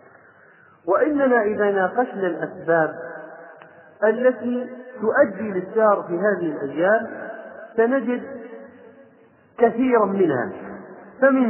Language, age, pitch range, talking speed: Arabic, 40-59, 170-230 Hz, 75 wpm